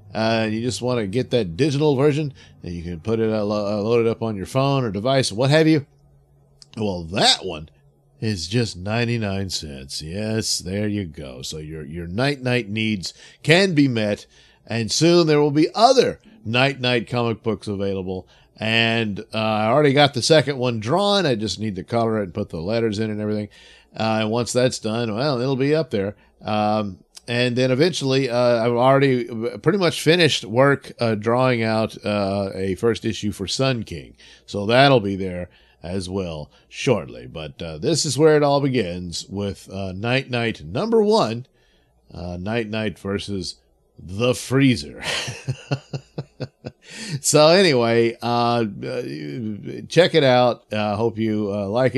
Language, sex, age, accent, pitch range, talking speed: English, male, 50-69, American, 100-135 Hz, 170 wpm